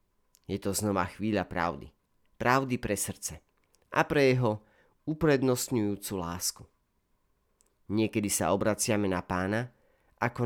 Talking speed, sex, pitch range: 110 wpm, male, 90-120 Hz